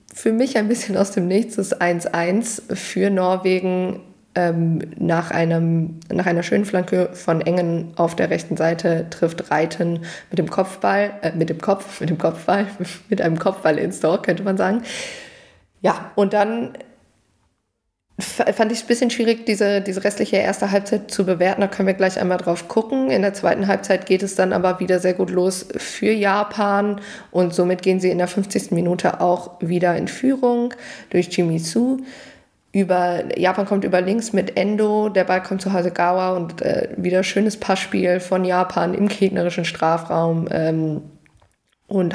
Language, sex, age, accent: German, female, 20-39, German